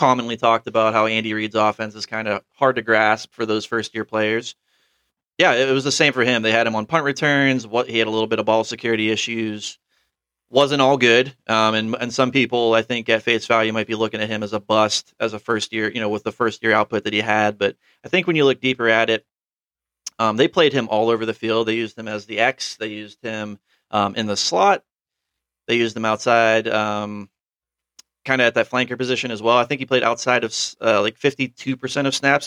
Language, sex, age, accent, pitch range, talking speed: English, male, 30-49, American, 110-125 Hz, 240 wpm